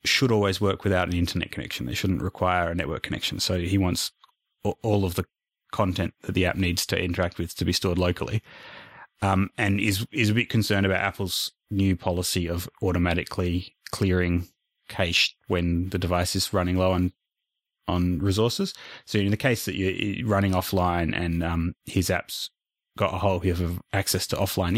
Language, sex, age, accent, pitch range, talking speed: English, male, 30-49, Australian, 90-100 Hz, 180 wpm